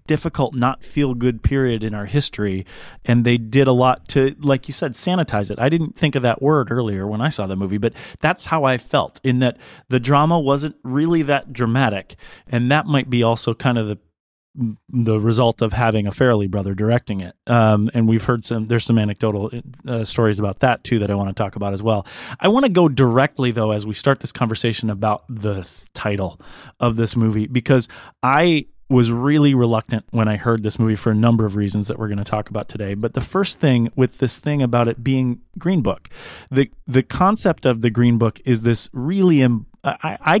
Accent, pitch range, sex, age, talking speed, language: American, 115-135 Hz, male, 30-49, 215 wpm, English